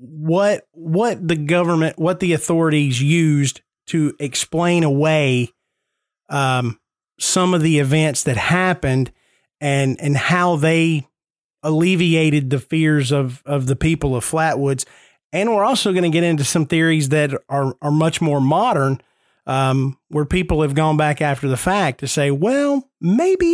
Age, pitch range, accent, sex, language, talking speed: 30-49, 145-185 Hz, American, male, English, 150 wpm